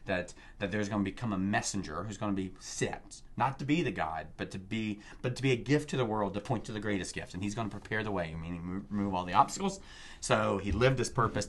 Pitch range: 95-130 Hz